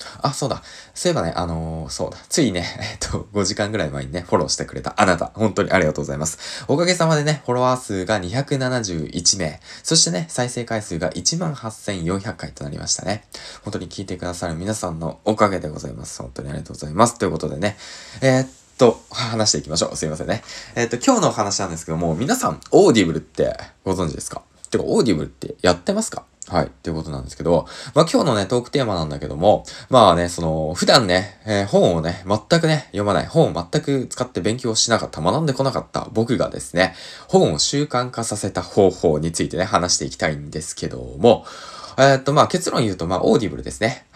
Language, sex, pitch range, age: Japanese, male, 85-125 Hz, 20-39